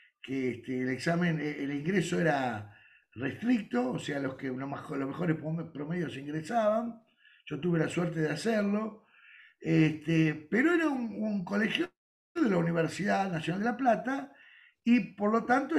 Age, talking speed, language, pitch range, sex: 60-79, 155 wpm, Spanish, 160-245 Hz, male